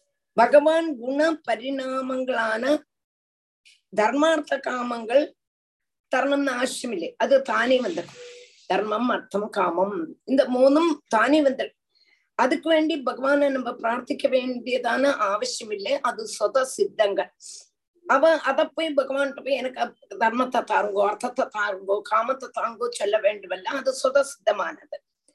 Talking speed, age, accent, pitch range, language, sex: 110 wpm, 20-39, native, 220-300 Hz, Tamil, female